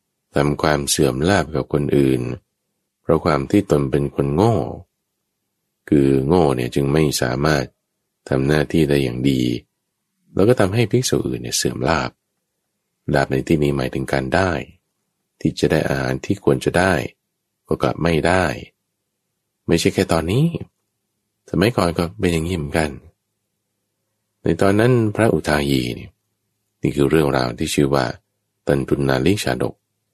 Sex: male